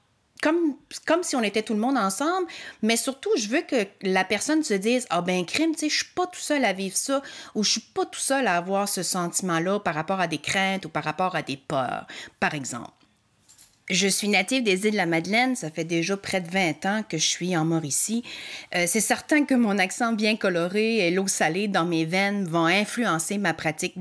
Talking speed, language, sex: 235 wpm, French, female